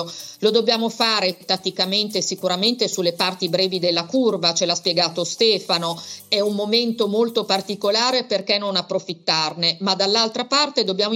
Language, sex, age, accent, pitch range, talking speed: Italian, female, 50-69, native, 180-225 Hz, 140 wpm